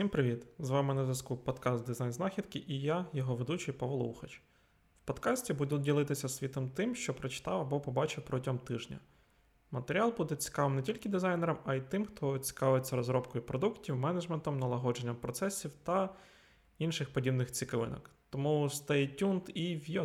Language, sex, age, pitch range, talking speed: Ukrainian, male, 20-39, 135-165 Hz, 155 wpm